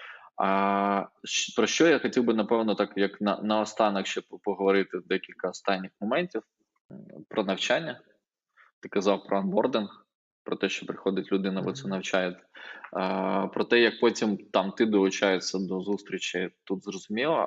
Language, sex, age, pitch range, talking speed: Ukrainian, male, 20-39, 95-105 Hz, 145 wpm